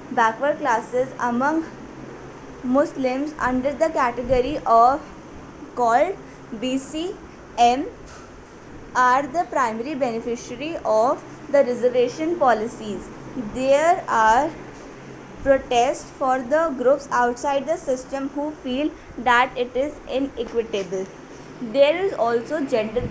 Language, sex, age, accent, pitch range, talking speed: English, female, 20-39, Indian, 240-290 Hz, 95 wpm